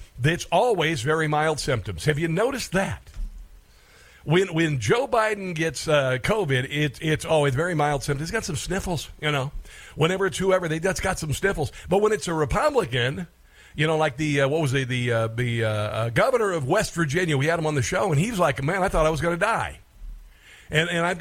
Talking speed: 225 wpm